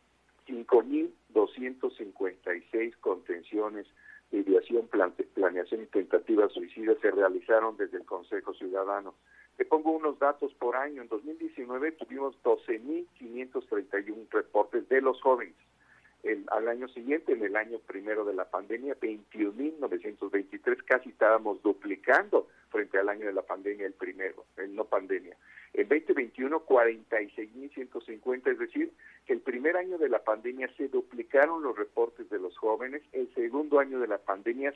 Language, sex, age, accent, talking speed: Spanish, male, 50-69, Mexican, 125 wpm